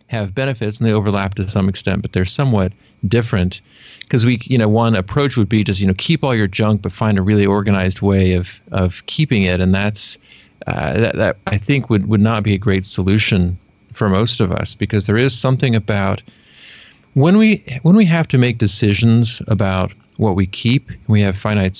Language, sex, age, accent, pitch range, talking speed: English, male, 40-59, American, 100-120 Hz, 205 wpm